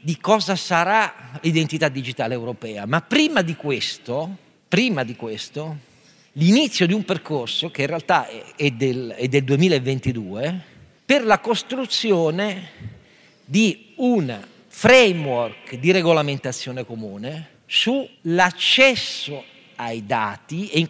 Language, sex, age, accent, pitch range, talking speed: Italian, male, 50-69, native, 140-200 Hz, 110 wpm